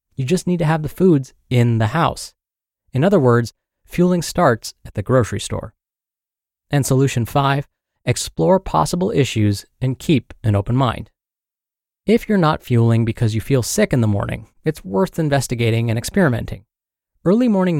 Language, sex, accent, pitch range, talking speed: English, male, American, 115-155 Hz, 160 wpm